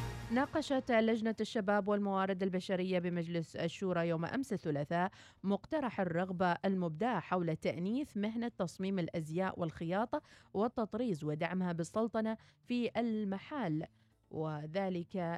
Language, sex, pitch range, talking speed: Arabic, female, 170-220 Hz, 100 wpm